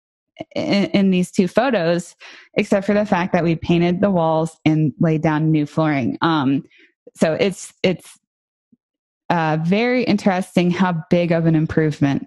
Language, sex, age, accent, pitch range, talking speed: English, female, 20-39, American, 165-205 Hz, 155 wpm